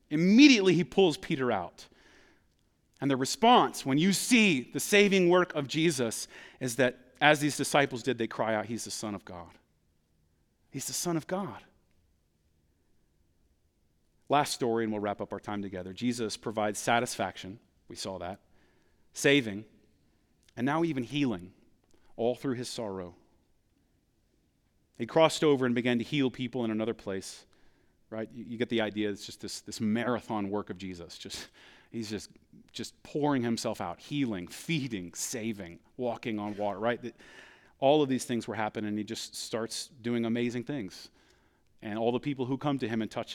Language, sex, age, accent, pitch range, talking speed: English, male, 40-59, American, 100-140 Hz, 165 wpm